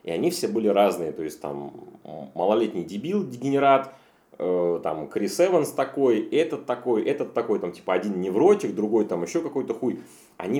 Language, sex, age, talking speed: Russian, male, 30-49, 160 wpm